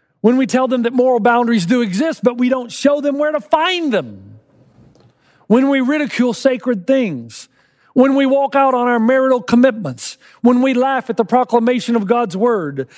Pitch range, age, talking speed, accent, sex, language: 150-245 Hz, 40-59, 185 wpm, American, male, English